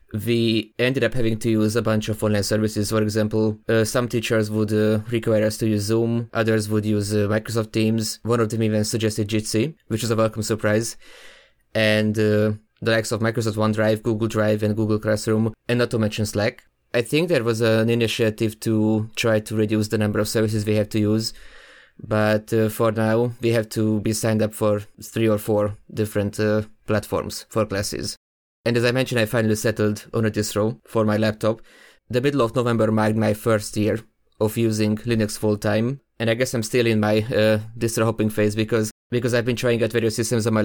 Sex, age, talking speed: male, 20-39, 210 wpm